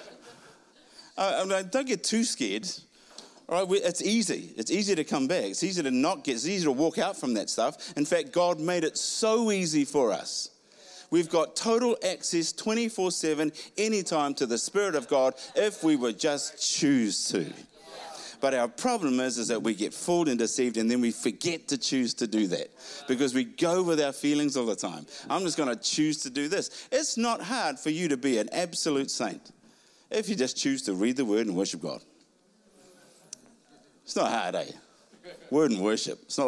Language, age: English, 50-69